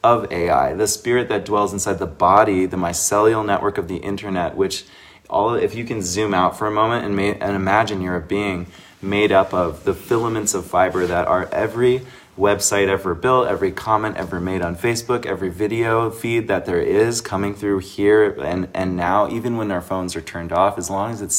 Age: 20-39